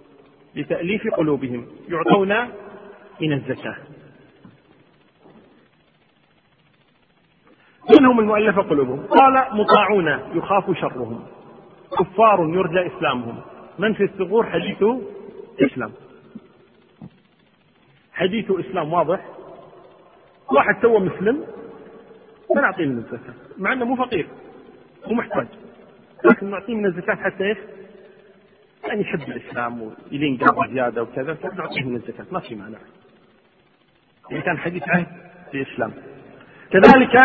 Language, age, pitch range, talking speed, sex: Arabic, 40-59, 150-215 Hz, 100 wpm, male